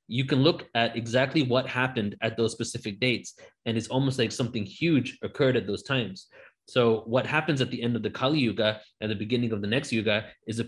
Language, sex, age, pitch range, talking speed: English, male, 20-39, 110-125 Hz, 225 wpm